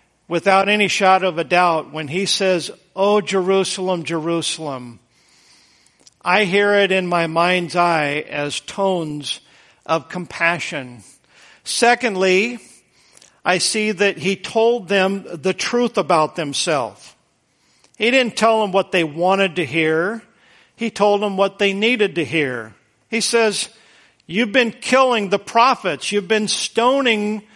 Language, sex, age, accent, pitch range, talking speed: English, male, 50-69, American, 190-230 Hz, 135 wpm